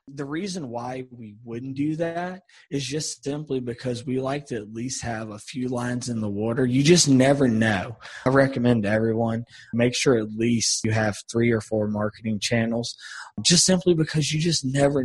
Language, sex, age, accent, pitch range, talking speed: English, male, 20-39, American, 110-130 Hz, 190 wpm